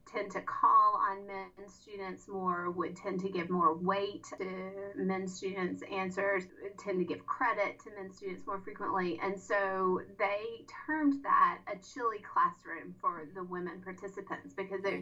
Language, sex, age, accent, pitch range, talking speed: English, female, 30-49, American, 190-280 Hz, 160 wpm